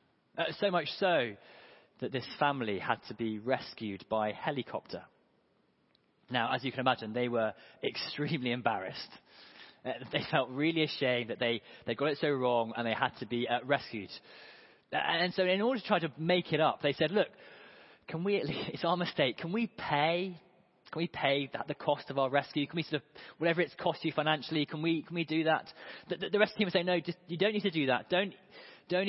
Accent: British